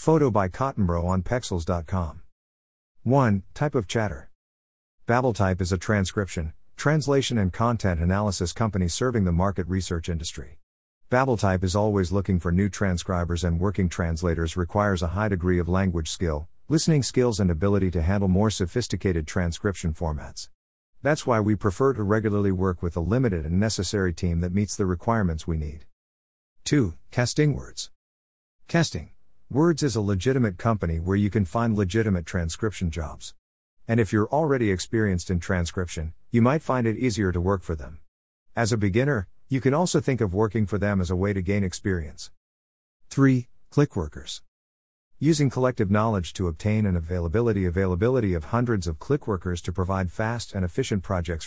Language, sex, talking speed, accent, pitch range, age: English, male, 160 wpm, American, 85-115 Hz, 50-69